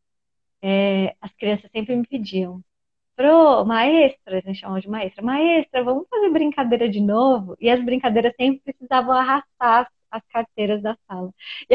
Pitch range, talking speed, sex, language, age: 210-270 Hz, 155 wpm, female, Portuguese, 20-39